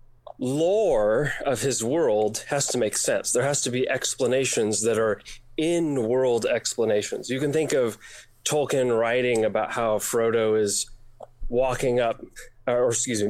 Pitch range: 115-145 Hz